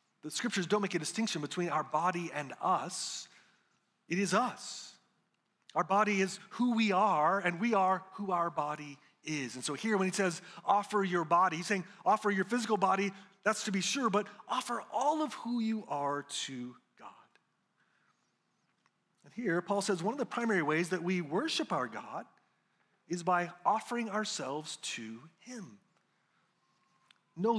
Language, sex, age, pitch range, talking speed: English, male, 40-59, 180-220 Hz, 165 wpm